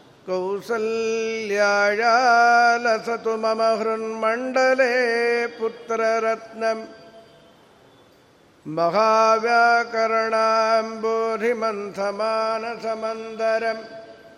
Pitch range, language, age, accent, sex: 225-245 Hz, Kannada, 50-69, native, male